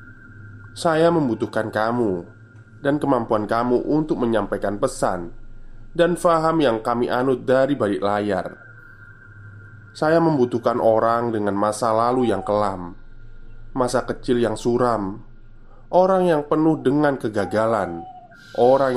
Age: 20-39